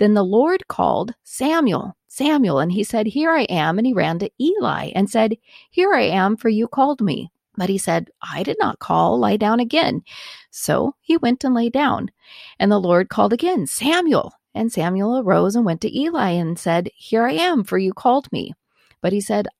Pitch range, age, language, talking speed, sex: 190-260 Hz, 40-59, English, 205 wpm, female